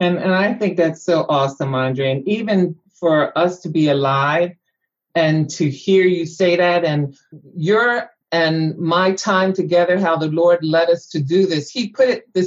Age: 50-69